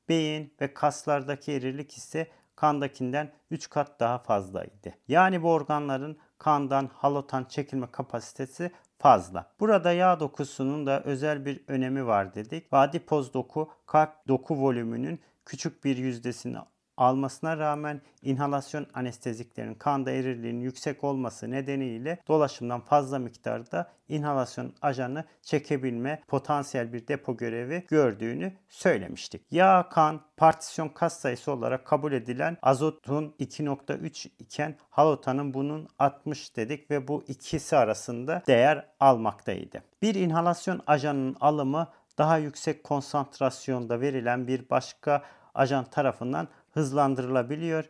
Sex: male